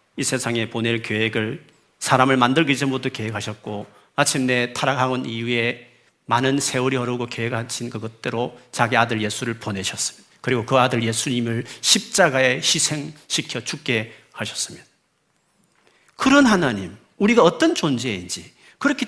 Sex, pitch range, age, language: male, 115-155 Hz, 40-59, Korean